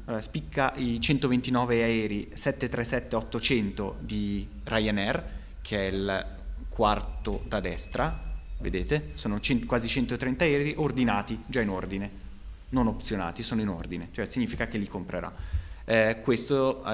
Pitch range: 100-125 Hz